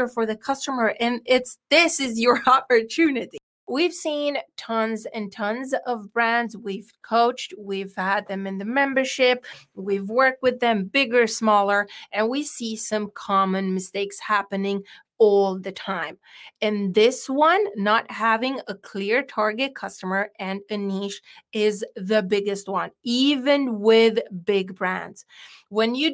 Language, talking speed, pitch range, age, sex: English, 140 wpm, 210-280 Hz, 30-49, female